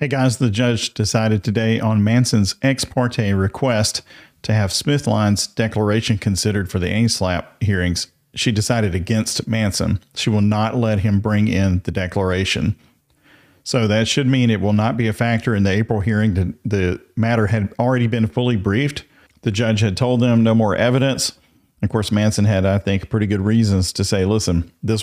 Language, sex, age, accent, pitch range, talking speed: English, male, 40-59, American, 95-115 Hz, 180 wpm